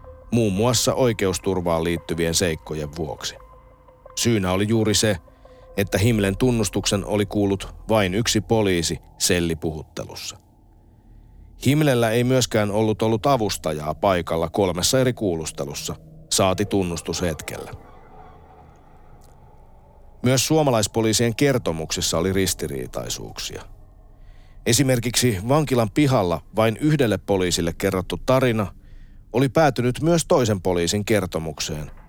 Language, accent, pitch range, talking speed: Finnish, native, 85-115 Hz, 95 wpm